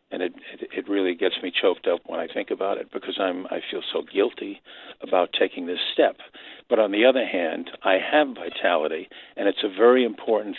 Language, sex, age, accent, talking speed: English, male, 50-69, American, 205 wpm